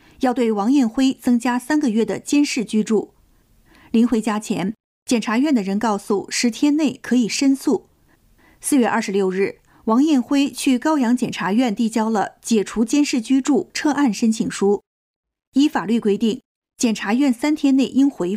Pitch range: 215-270 Hz